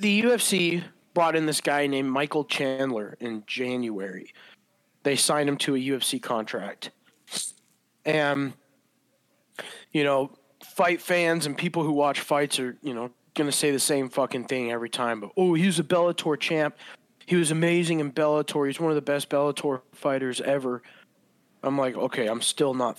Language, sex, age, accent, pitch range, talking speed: English, male, 20-39, American, 135-165 Hz, 170 wpm